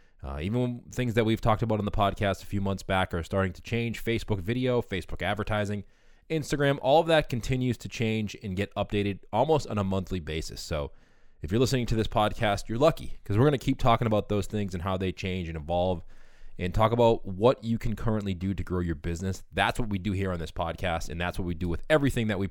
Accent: American